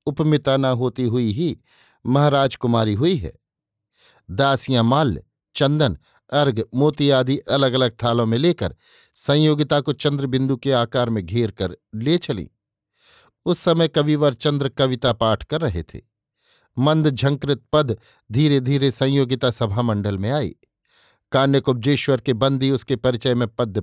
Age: 50-69